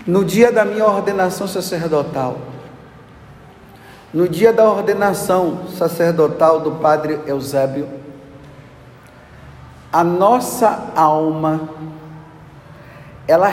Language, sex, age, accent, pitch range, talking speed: Portuguese, male, 50-69, Brazilian, 145-195 Hz, 80 wpm